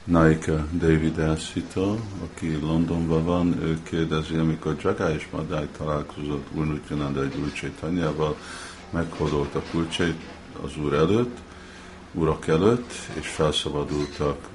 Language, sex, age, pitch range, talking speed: Hungarian, male, 50-69, 75-90 Hz, 115 wpm